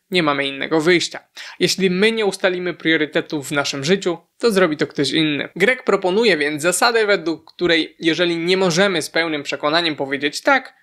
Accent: native